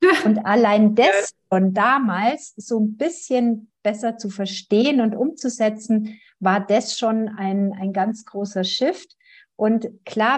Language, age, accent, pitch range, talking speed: German, 50-69, German, 205-250 Hz, 135 wpm